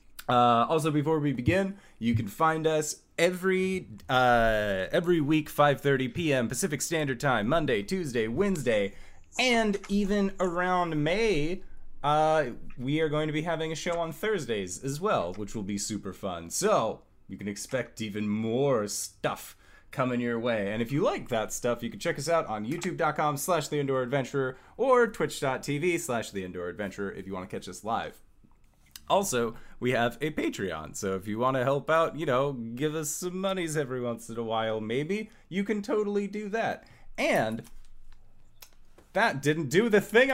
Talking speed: 175 wpm